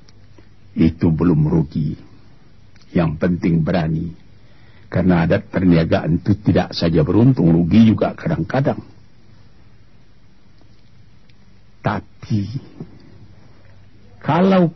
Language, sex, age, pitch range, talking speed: Malay, male, 60-79, 100-135 Hz, 75 wpm